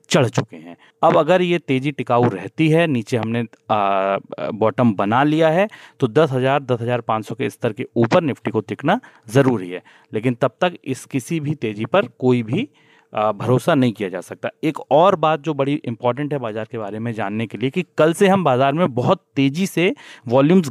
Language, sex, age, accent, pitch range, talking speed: Hindi, male, 30-49, native, 115-150 Hz, 205 wpm